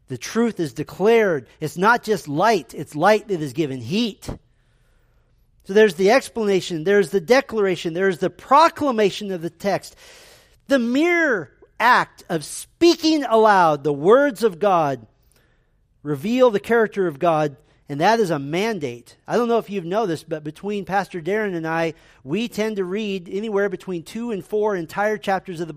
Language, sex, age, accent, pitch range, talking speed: English, male, 40-59, American, 170-225 Hz, 170 wpm